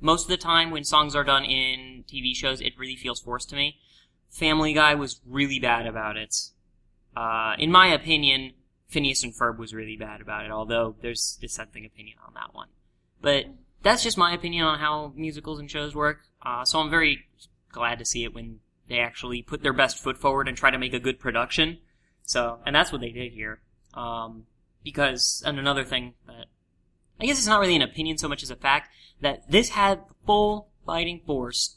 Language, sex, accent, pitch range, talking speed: English, male, American, 120-155 Hz, 205 wpm